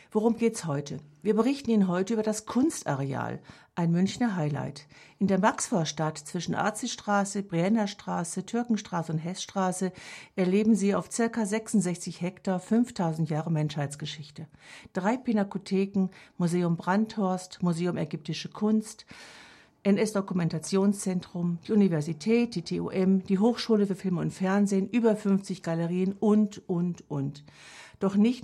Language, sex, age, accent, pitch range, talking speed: German, female, 60-79, German, 165-210 Hz, 120 wpm